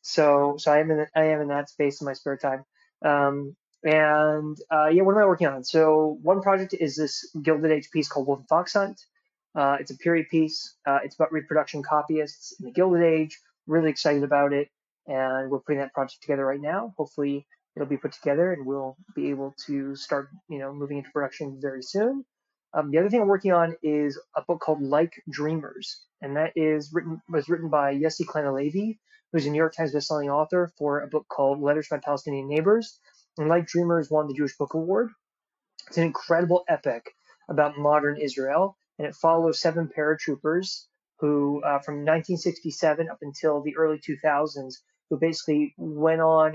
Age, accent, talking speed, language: 20-39, American, 190 wpm, English